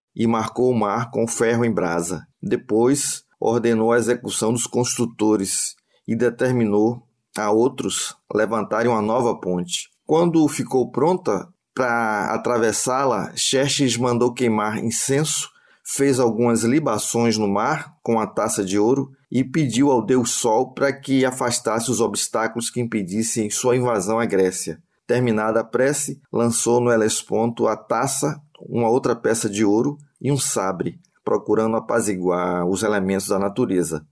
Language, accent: Portuguese, Brazilian